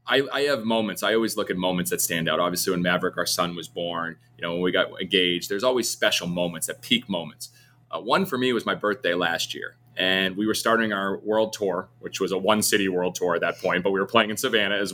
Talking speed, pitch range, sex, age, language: 255 wpm, 95-115 Hz, male, 30-49, English